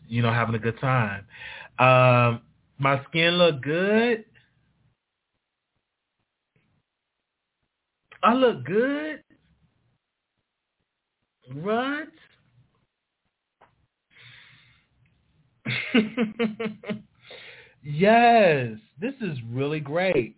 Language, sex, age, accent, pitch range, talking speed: English, male, 30-49, American, 115-165 Hz, 60 wpm